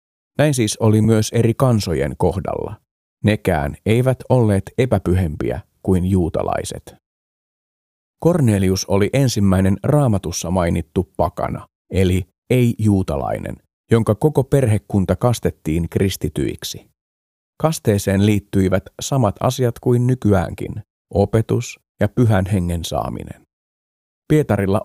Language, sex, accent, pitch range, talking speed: Finnish, male, native, 90-115 Hz, 90 wpm